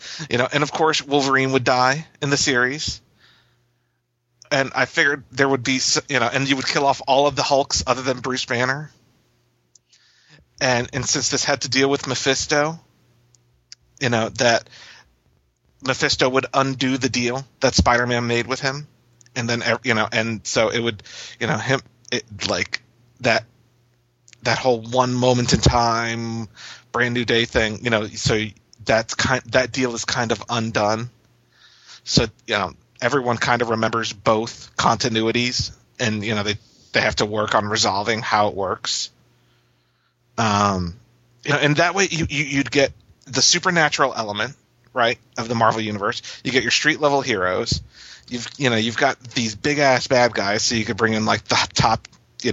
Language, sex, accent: English, male, American